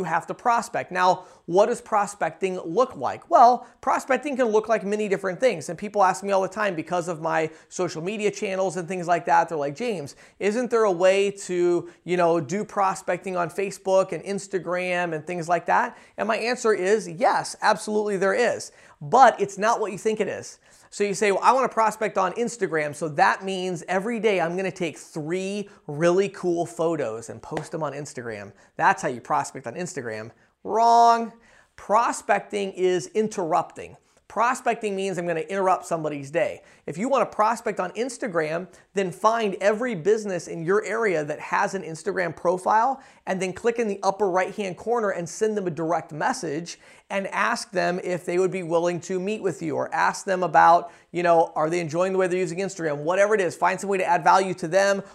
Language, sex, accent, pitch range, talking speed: English, male, American, 175-205 Hz, 200 wpm